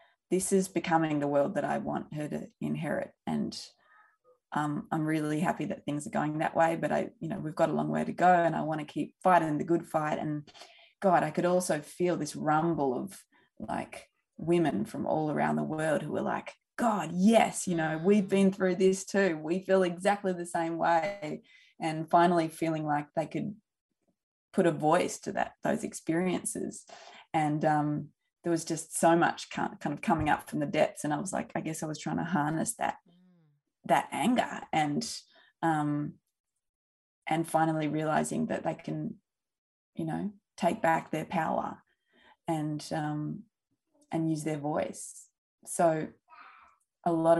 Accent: Australian